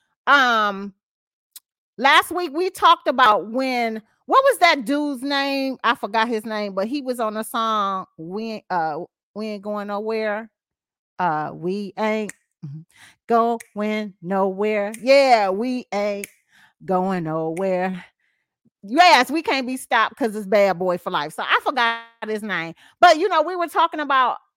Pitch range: 215-300 Hz